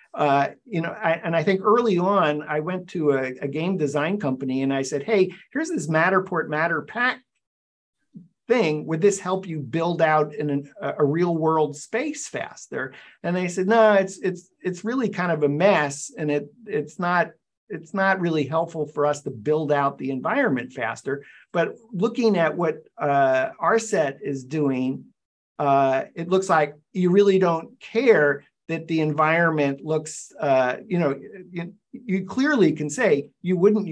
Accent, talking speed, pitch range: American, 175 wpm, 145-190 Hz